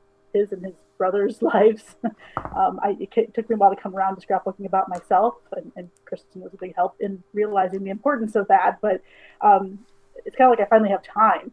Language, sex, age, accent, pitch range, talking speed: English, female, 30-49, American, 195-245 Hz, 215 wpm